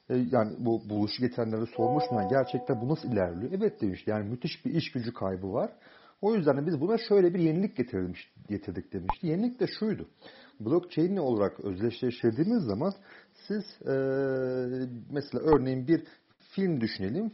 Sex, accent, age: male, native, 40-59